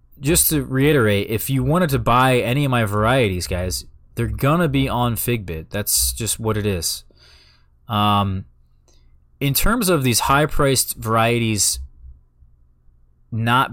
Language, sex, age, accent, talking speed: English, male, 20-39, American, 140 wpm